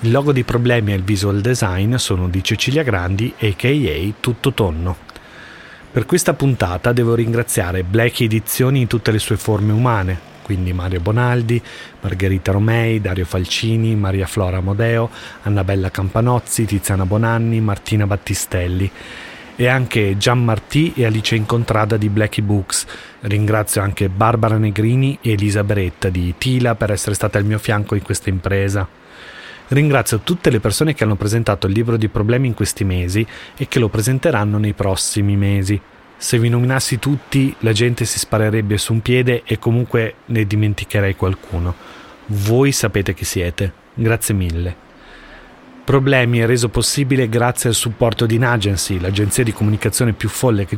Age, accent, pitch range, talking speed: 30-49, native, 100-120 Hz, 155 wpm